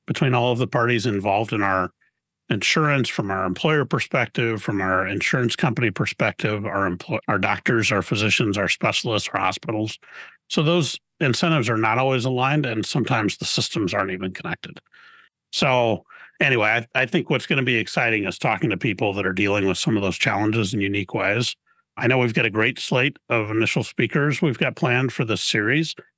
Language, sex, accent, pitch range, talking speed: English, male, American, 100-130 Hz, 190 wpm